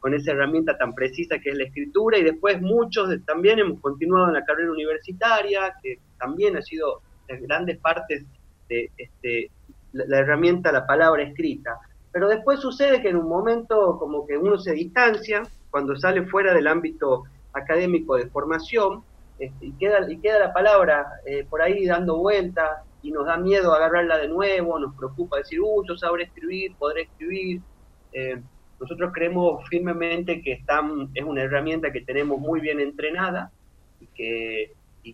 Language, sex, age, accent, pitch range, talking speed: Spanish, male, 30-49, Argentinian, 135-180 Hz, 160 wpm